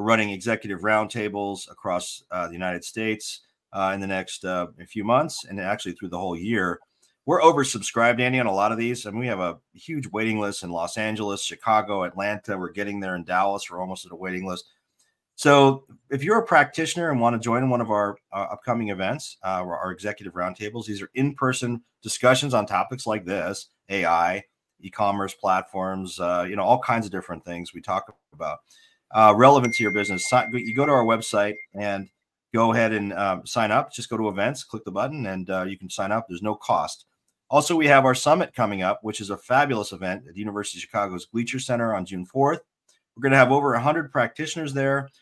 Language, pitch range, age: English, 95-120 Hz, 40-59